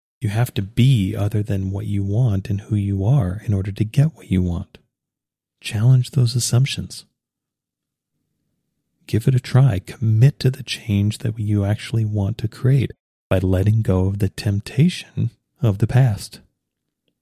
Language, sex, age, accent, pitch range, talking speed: English, male, 40-59, American, 100-125 Hz, 160 wpm